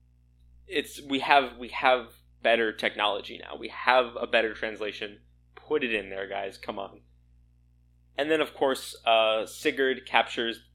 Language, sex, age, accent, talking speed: English, male, 20-39, American, 150 wpm